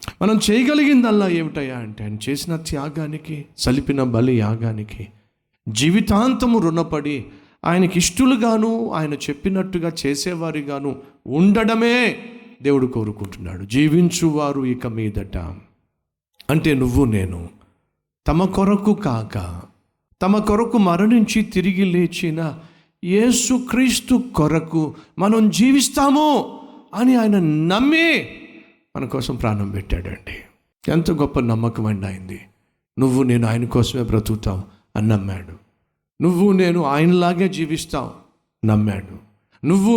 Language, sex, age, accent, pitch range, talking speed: Telugu, male, 50-69, native, 120-195 Hz, 95 wpm